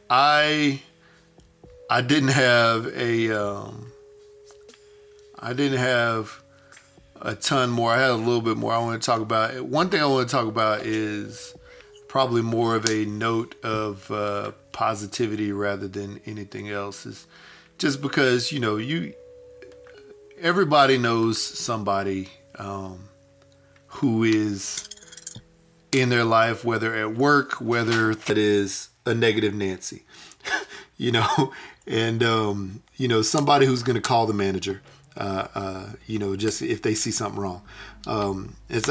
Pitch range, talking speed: 105-130 Hz, 140 wpm